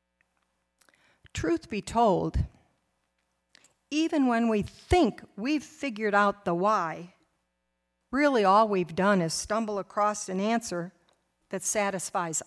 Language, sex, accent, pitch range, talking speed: English, female, American, 155-235 Hz, 110 wpm